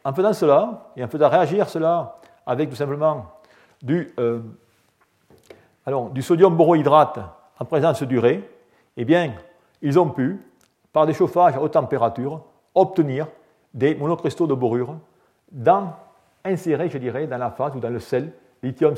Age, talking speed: 40-59, 150 wpm